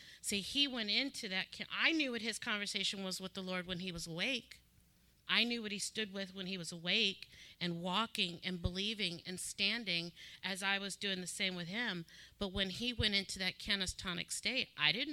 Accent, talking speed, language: American, 205 wpm, English